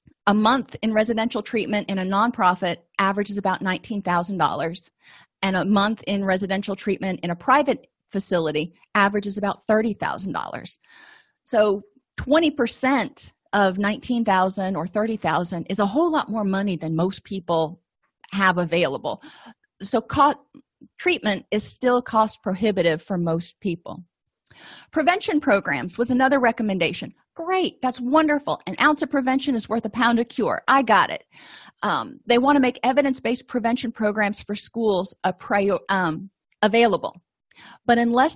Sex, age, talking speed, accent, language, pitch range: female, 40-59, 135 wpm, American, English, 195-245 Hz